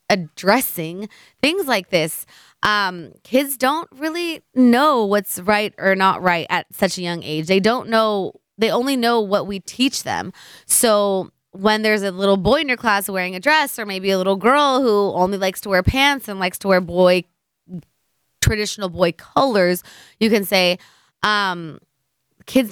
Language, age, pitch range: English, 20-39, 175-215 Hz